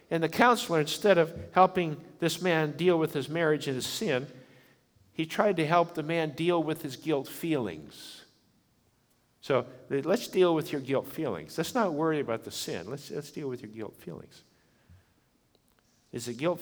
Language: English